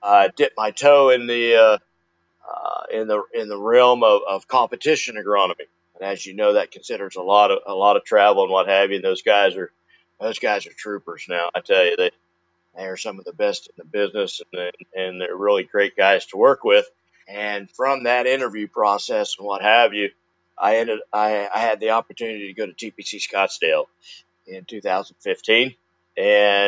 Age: 50-69